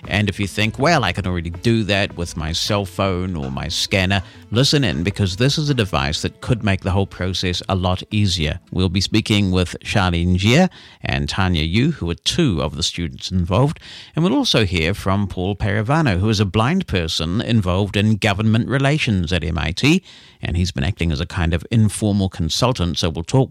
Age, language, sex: 50-69, English, male